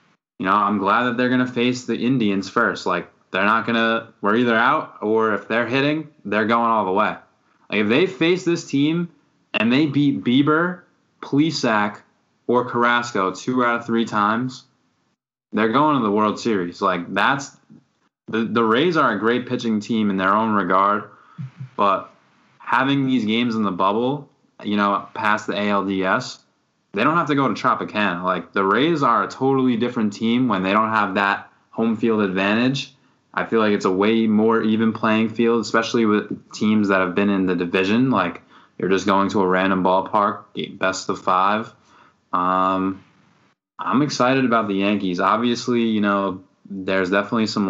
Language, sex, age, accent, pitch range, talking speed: English, male, 20-39, American, 100-125 Hz, 180 wpm